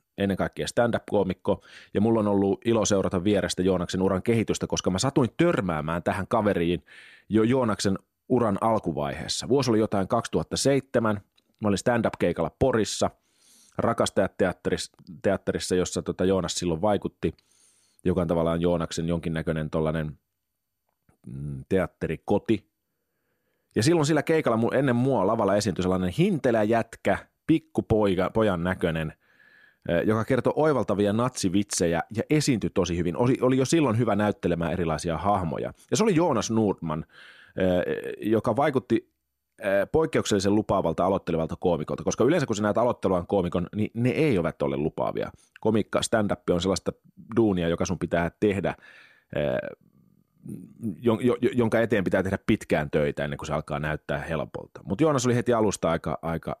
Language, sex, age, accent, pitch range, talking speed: Finnish, male, 30-49, native, 85-115 Hz, 130 wpm